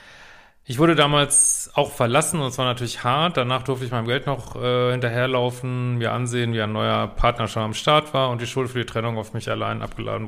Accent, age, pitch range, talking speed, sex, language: German, 40-59, 115-135 Hz, 215 wpm, male, German